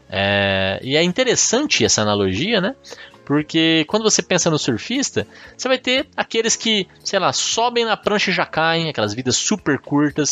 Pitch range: 105-165 Hz